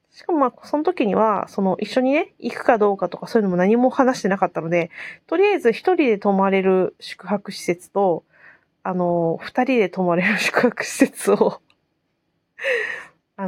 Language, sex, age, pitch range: Japanese, female, 20-39, 180-255 Hz